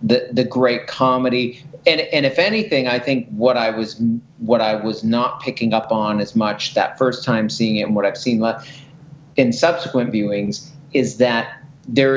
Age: 40-59